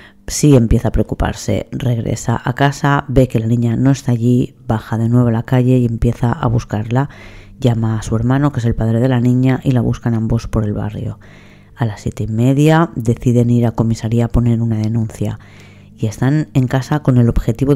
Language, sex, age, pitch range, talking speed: Spanish, female, 20-39, 110-130 Hz, 210 wpm